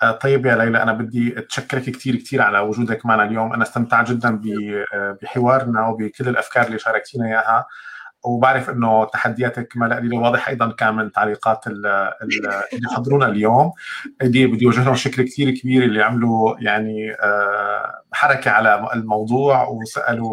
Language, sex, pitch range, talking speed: Arabic, male, 110-125 Hz, 140 wpm